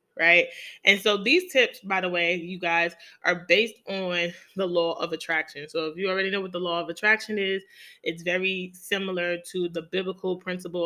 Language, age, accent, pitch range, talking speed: English, 20-39, American, 175-210 Hz, 195 wpm